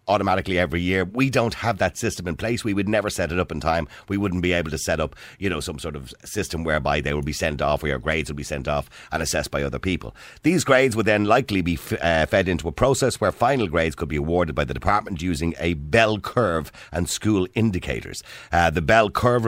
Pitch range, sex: 75-105 Hz, male